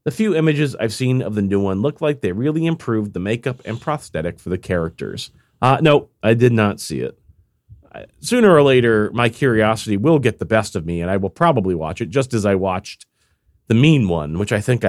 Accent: American